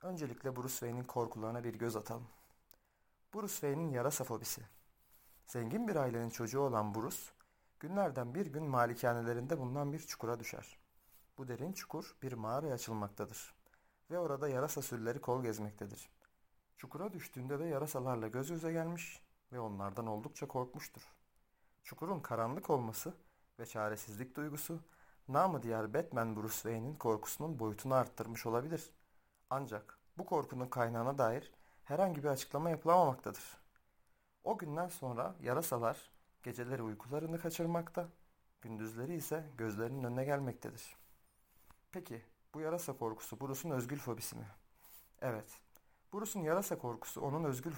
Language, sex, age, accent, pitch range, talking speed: Turkish, male, 40-59, native, 115-155 Hz, 120 wpm